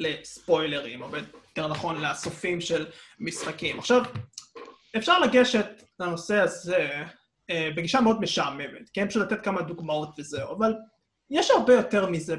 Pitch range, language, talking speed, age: 165-220 Hz, Hebrew, 130 wpm, 20-39